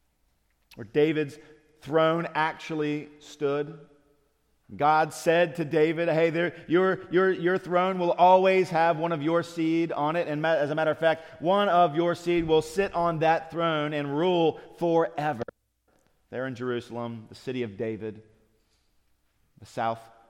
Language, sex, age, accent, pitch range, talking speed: English, male, 40-59, American, 110-160 Hz, 150 wpm